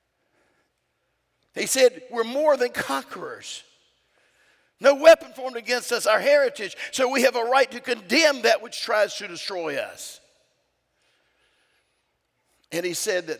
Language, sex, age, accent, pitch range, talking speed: English, male, 50-69, American, 175-275 Hz, 135 wpm